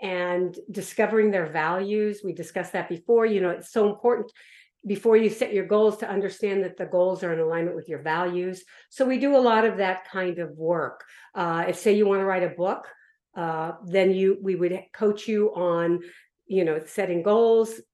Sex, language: female, English